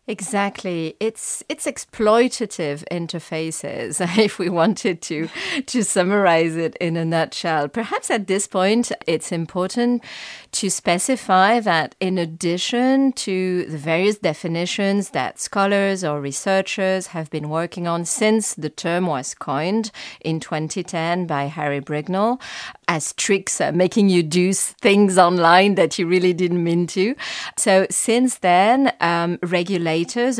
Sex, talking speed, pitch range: female, 130 wpm, 170-220 Hz